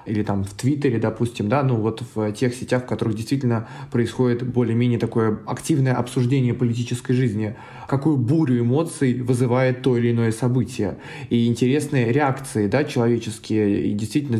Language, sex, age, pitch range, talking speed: Russian, male, 20-39, 115-135 Hz, 150 wpm